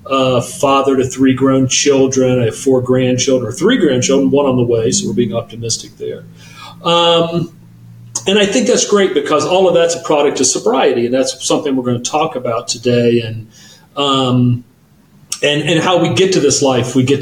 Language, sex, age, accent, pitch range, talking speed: English, male, 40-59, American, 125-140 Hz, 200 wpm